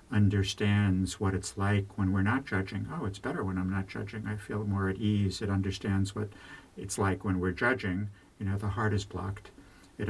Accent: American